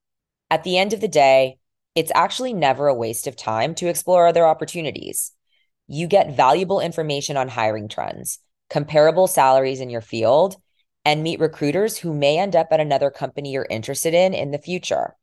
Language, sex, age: English, female, 20-39